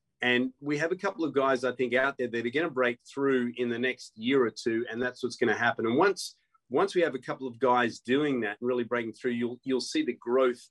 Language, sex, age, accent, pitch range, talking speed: English, male, 30-49, Australian, 115-130 Hz, 275 wpm